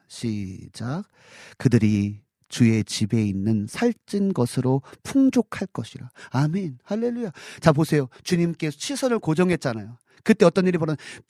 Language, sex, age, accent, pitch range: Korean, male, 40-59, native, 170-285 Hz